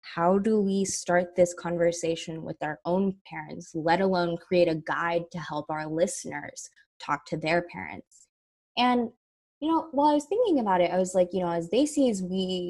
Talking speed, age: 200 wpm, 20-39